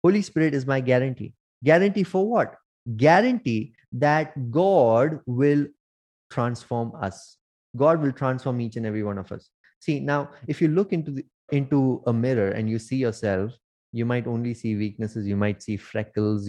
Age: 20-39